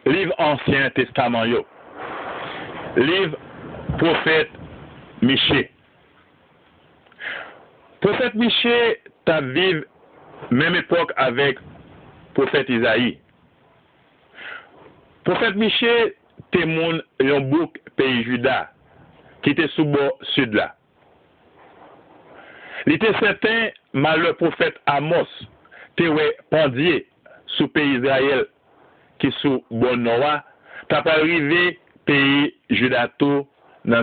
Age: 60-79